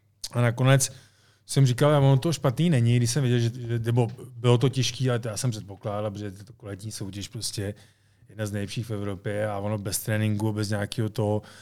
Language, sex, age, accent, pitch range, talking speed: Czech, male, 20-39, native, 110-120 Hz, 205 wpm